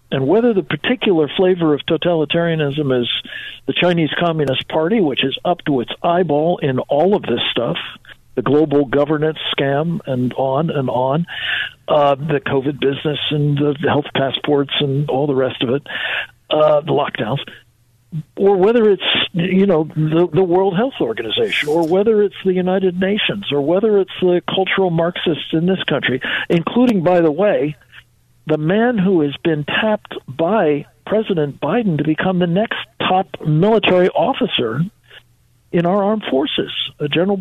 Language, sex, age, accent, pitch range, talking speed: English, male, 60-79, American, 145-190 Hz, 160 wpm